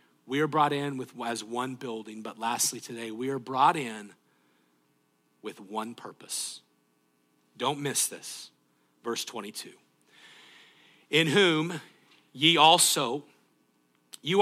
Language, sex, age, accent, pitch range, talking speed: English, male, 40-59, American, 135-185 Hz, 110 wpm